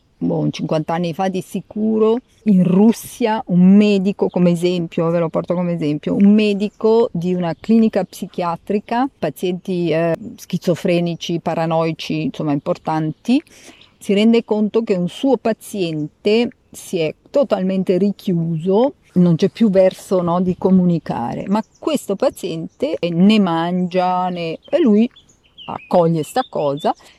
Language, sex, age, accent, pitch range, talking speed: Italian, female, 40-59, native, 170-230 Hz, 125 wpm